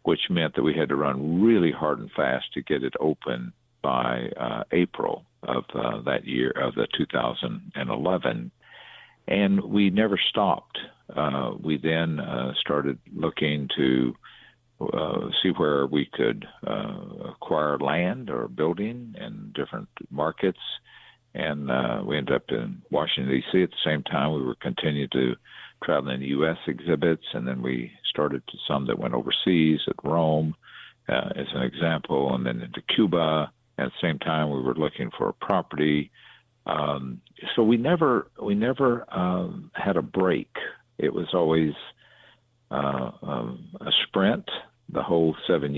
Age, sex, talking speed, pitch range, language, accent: 50-69, male, 155 wpm, 70-90 Hz, English, American